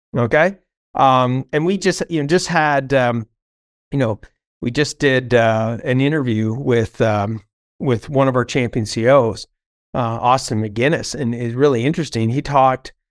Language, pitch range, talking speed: English, 130-180 Hz, 160 wpm